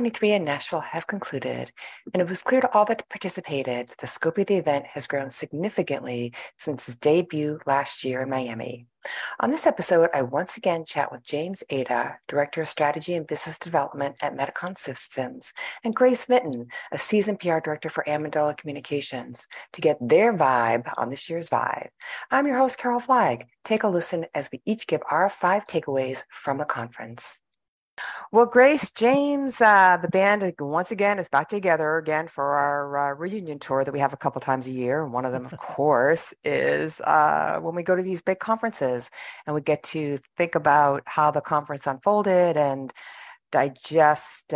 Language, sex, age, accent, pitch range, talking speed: English, female, 40-59, American, 135-185 Hz, 180 wpm